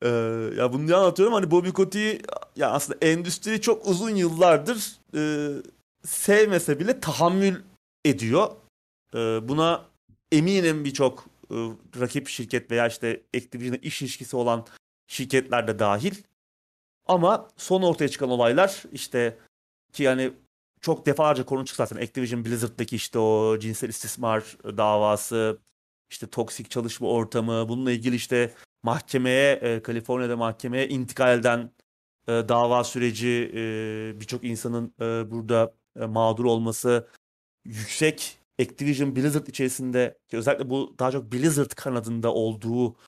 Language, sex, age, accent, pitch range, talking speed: Turkish, male, 30-49, native, 115-140 Hz, 125 wpm